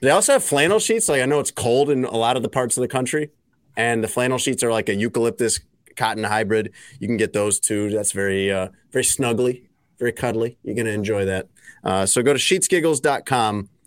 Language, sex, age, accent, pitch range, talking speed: English, male, 30-49, American, 105-130 Hz, 215 wpm